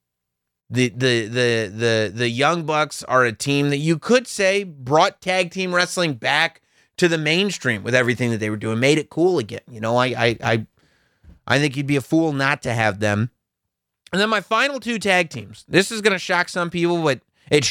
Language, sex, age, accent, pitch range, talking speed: English, male, 30-49, American, 115-160 Hz, 215 wpm